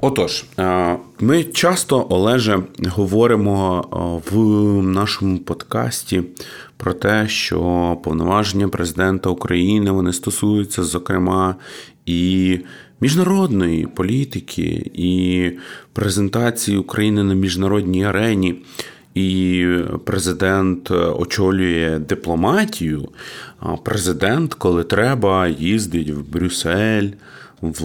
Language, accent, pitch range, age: Ukrainian, native, 90-105 Hz, 30-49